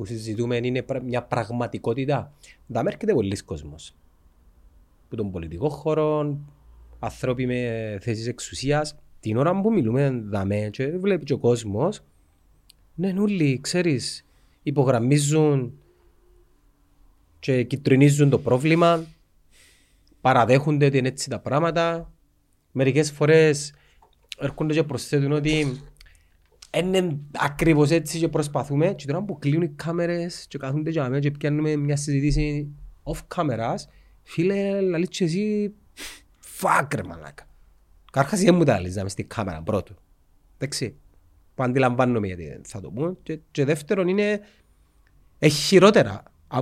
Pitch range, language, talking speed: 95-155 Hz, Greek, 100 wpm